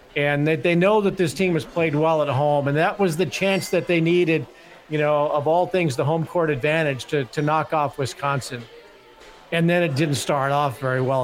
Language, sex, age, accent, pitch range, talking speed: English, male, 40-59, American, 150-170 Hz, 225 wpm